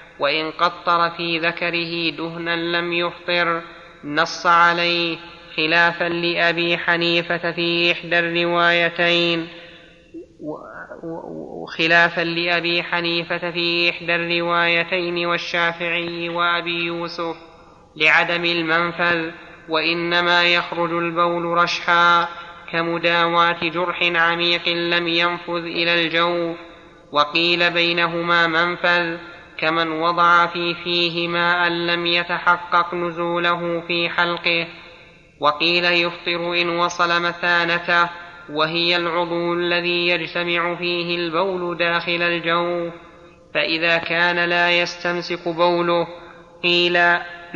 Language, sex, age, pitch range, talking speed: Arabic, male, 30-49, 170-175 Hz, 85 wpm